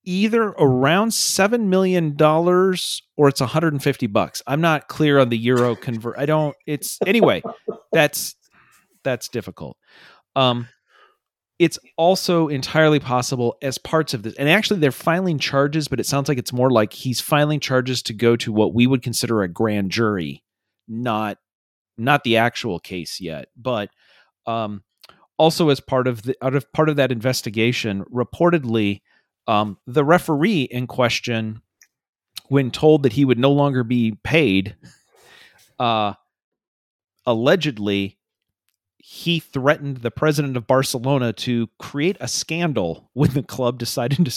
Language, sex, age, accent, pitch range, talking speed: English, male, 40-59, American, 120-160 Hz, 145 wpm